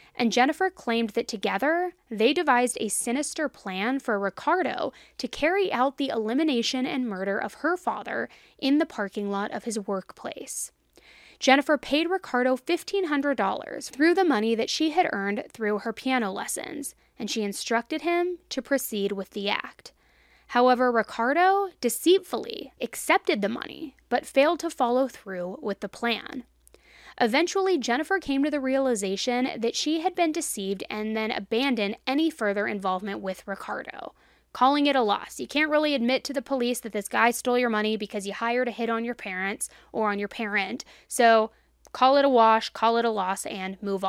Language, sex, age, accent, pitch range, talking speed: English, female, 20-39, American, 210-280 Hz, 170 wpm